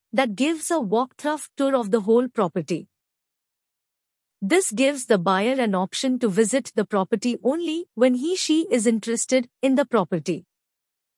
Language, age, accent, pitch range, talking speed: English, 50-69, Indian, 225-305 Hz, 145 wpm